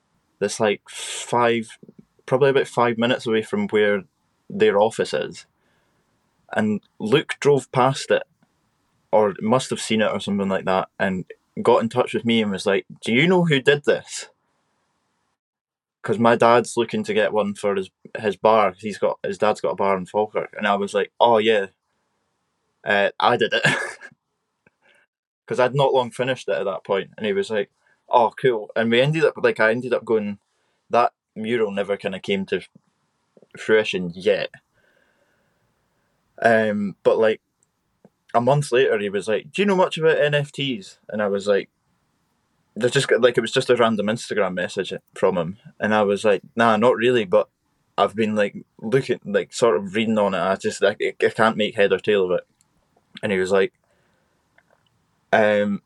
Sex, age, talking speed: male, 20-39, 185 wpm